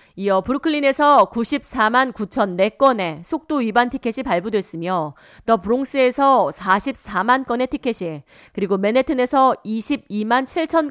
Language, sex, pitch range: Korean, female, 190-270 Hz